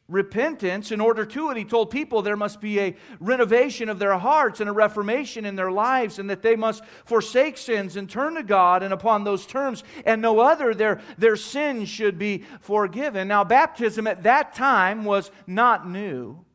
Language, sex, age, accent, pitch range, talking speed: English, male, 40-59, American, 200-240 Hz, 190 wpm